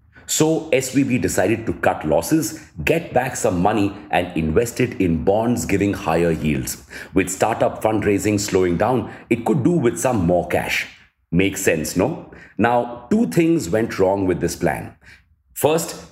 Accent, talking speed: Indian, 155 wpm